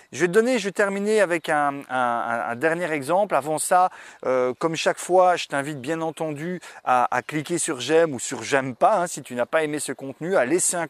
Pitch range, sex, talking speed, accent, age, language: 140-180 Hz, male, 230 wpm, French, 30-49, French